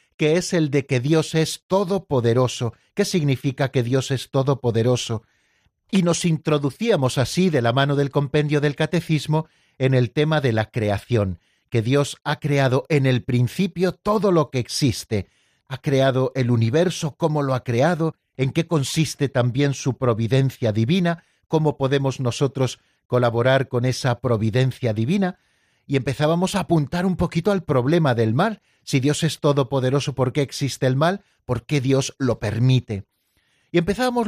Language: Spanish